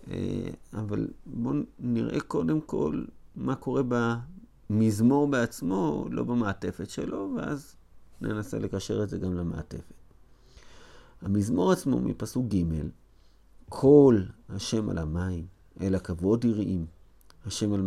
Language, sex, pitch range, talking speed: Hebrew, male, 90-120 Hz, 105 wpm